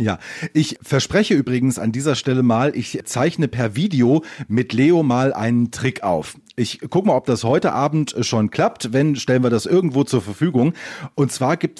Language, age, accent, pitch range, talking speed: German, 40-59, German, 110-165 Hz, 190 wpm